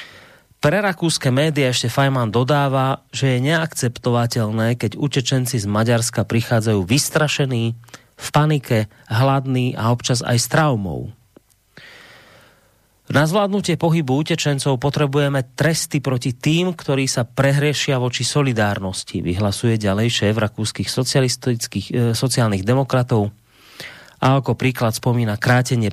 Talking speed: 110 wpm